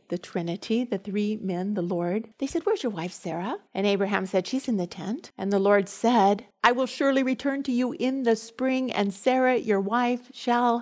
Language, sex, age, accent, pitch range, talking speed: English, female, 50-69, American, 195-245 Hz, 210 wpm